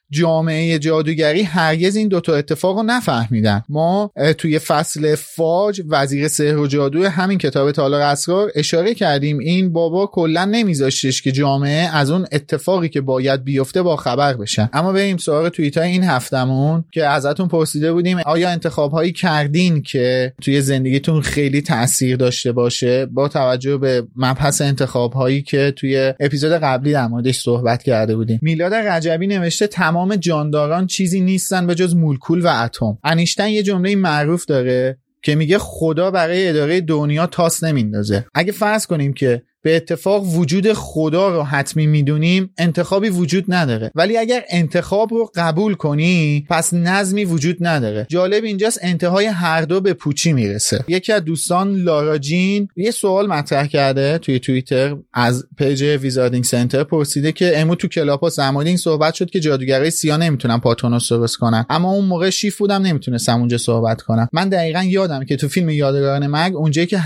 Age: 30-49